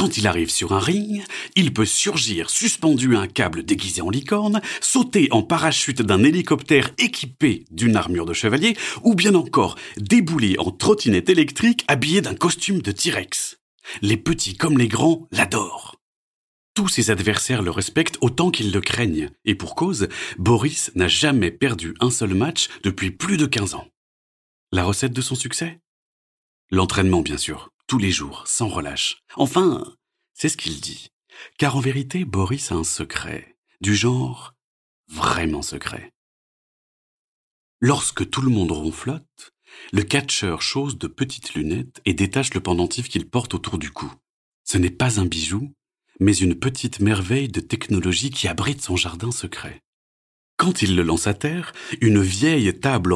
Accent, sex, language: French, male, French